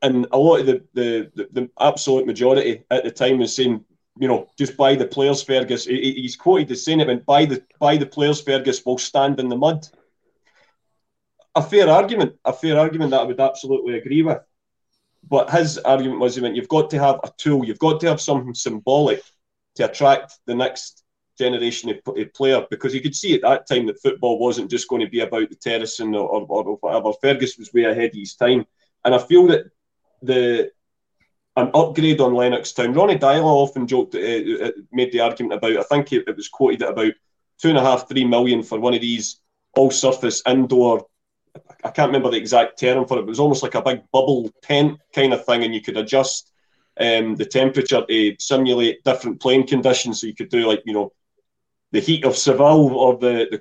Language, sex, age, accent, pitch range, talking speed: English, male, 30-49, British, 125-145 Hz, 210 wpm